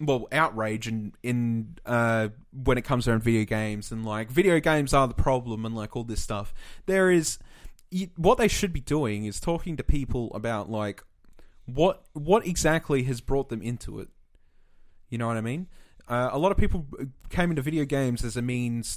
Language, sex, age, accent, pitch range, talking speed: English, male, 20-39, Australian, 115-165 Hz, 195 wpm